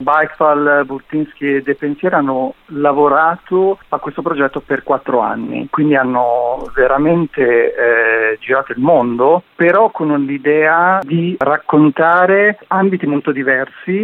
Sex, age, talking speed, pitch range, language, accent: male, 50-69, 115 wpm, 135-165 Hz, Italian, native